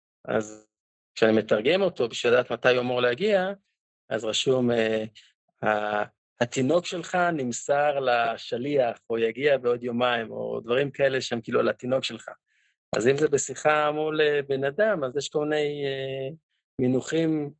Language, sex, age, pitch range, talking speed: Hebrew, male, 50-69, 115-155 Hz, 135 wpm